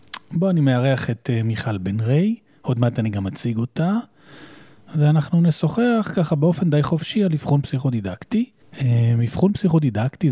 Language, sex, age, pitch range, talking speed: Hebrew, male, 30-49, 120-160 Hz, 140 wpm